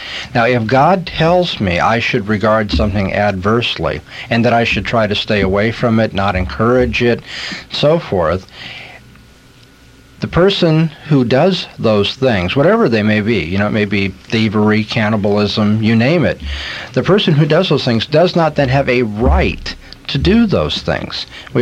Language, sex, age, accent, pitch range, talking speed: English, male, 50-69, American, 105-135 Hz, 170 wpm